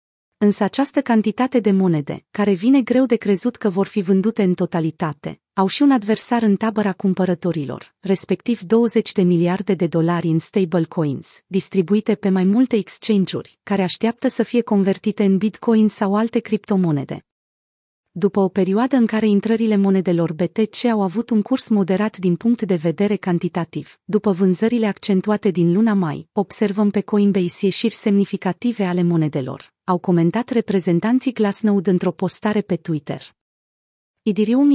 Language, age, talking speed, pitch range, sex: Romanian, 30-49, 150 wpm, 180-225 Hz, female